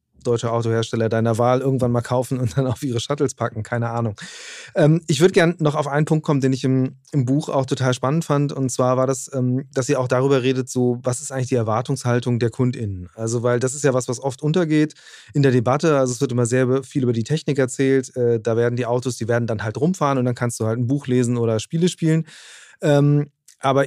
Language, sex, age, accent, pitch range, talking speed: German, male, 30-49, German, 125-145 Hz, 240 wpm